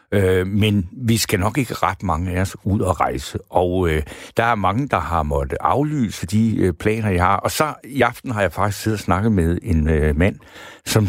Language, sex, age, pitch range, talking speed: Danish, male, 60-79, 95-120 Hz, 215 wpm